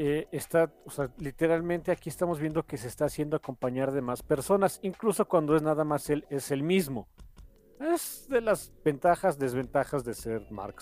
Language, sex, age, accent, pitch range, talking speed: Spanish, male, 40-59, Mexican, 130-185 Hz, 185 wpm